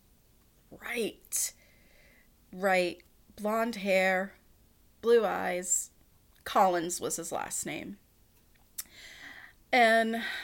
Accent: American